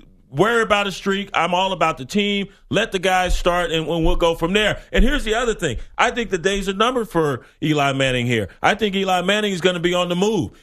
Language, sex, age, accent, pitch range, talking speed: English, male, 40-59, American, 180-215 Hz, 250 wpm